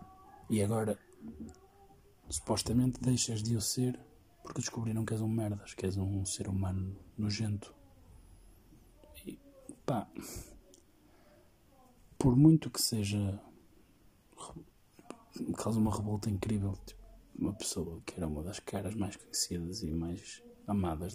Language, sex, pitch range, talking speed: Portuguese, male, 100-115 Hz, 115 wpm